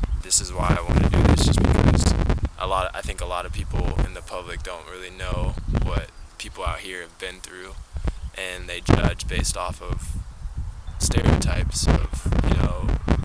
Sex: male